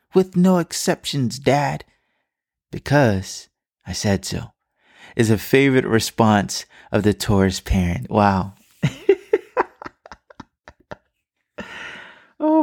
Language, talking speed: English, 85 wpm